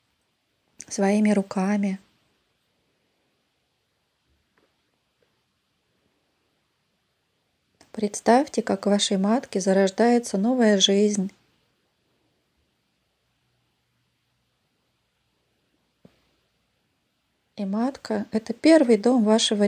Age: 20-39